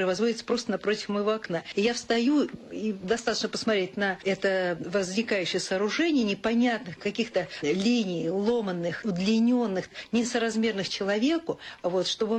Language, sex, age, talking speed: Russian, female, 50-69, 105 wpm